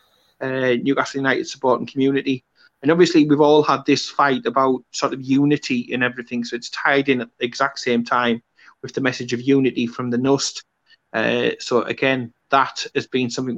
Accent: British